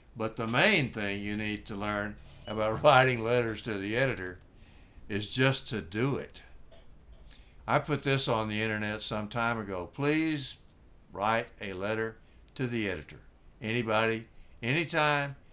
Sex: male